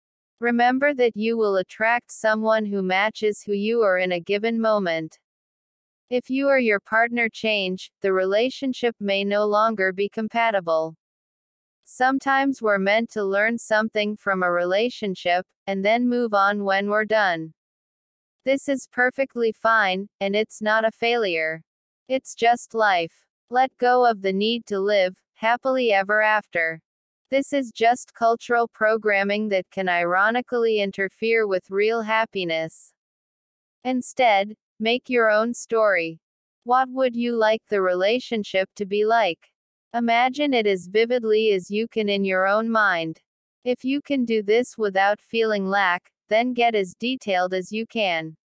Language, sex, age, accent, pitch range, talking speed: Hindi, female, 40-59, American, 195-235 Hz, 145 wpm